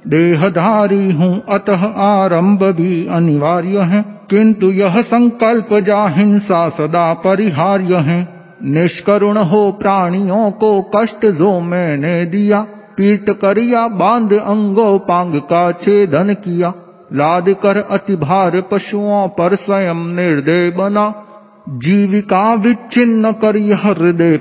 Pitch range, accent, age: 170-205 Hz, native, 50-69